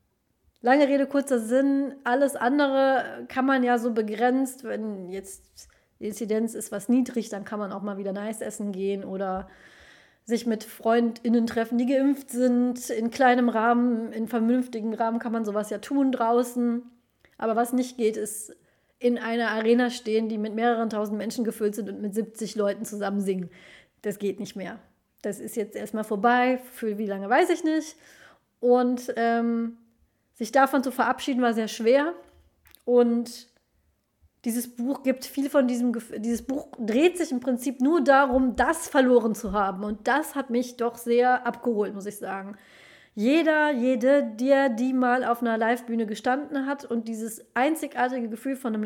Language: German